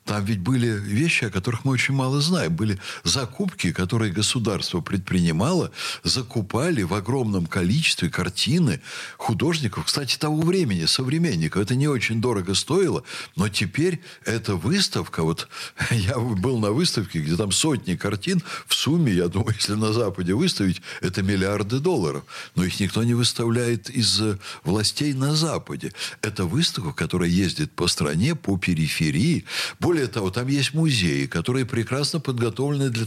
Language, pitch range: Russian, 100-140 Hz